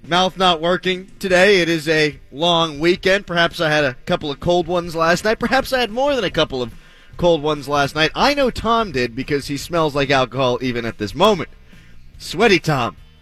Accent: American